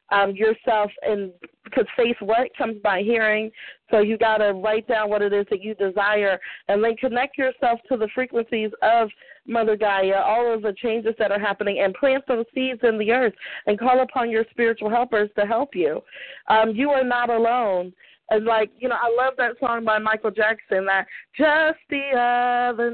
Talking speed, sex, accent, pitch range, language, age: 195 wpm, female, American, 215-255 Hz, English, 30-49